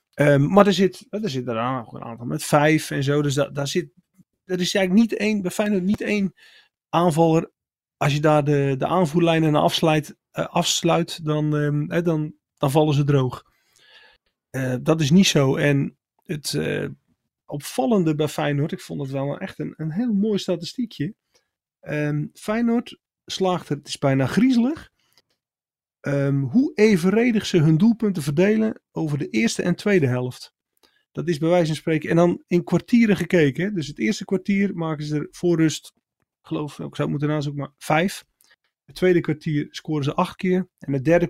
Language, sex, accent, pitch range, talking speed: Dutch, male, Dutch, 145-195 Hz, 175 wpm